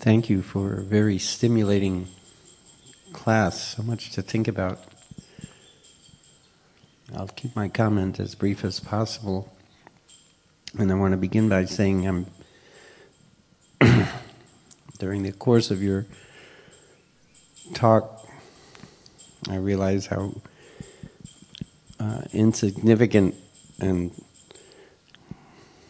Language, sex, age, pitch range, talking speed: English, male, 50-69, 95-105 Hz, 95 wpm